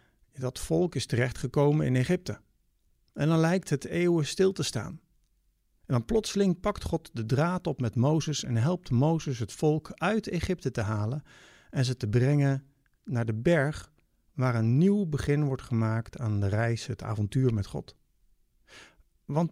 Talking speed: 165 wpm